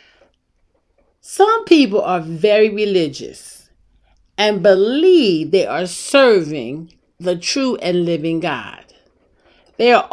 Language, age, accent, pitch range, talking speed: English, 40-59, American, 170-270 Hz, 100 wpm